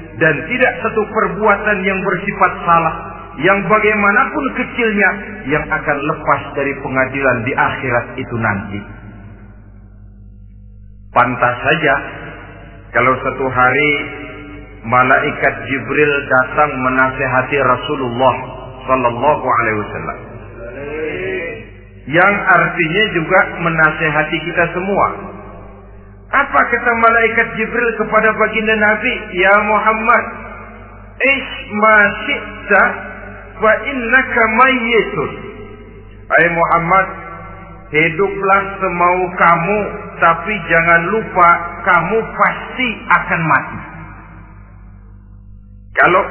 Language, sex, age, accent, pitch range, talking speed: Indonesian, male, 40-59, native, 130-200 Hz, 80 wpm